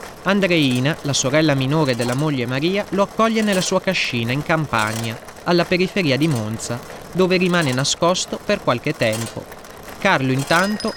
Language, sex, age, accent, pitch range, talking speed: Italian, male, 30-49, native, 130-185 Hz, 140 wpm